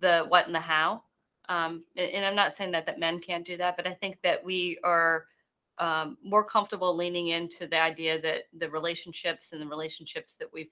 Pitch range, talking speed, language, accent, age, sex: 160-180 Hz, 205 wpm, English, American, 30-49, female